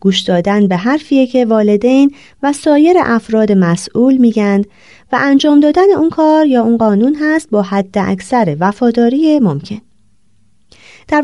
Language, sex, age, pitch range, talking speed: Persian, female, 30-49, 155-250 Hz, 140 wpm